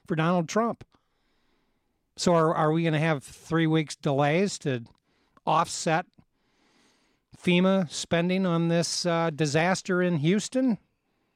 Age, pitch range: 50-69, 145-180 Hz